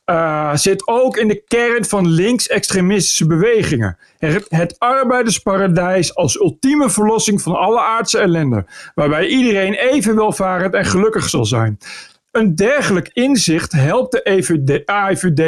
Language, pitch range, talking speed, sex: Dutch, 160-210 Hz, 125 wpm, male